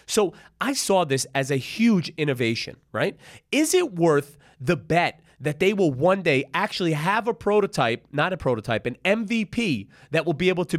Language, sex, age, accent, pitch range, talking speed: English, male, 30-49, American, 115-175 Hz, 185 wpm